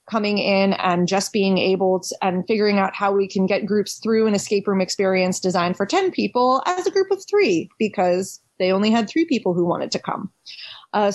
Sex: female